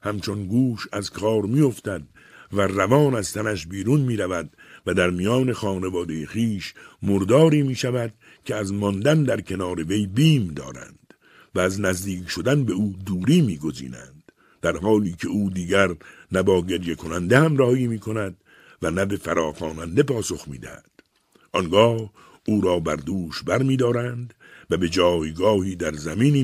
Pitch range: 95-130 Hz